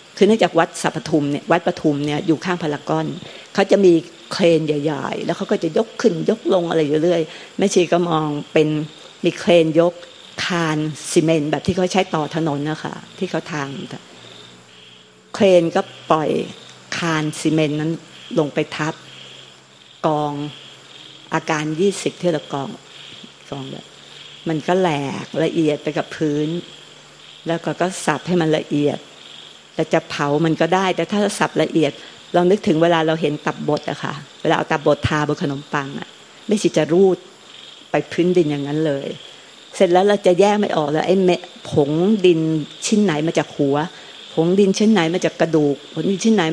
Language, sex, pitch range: Thai, female, 150-180 Hz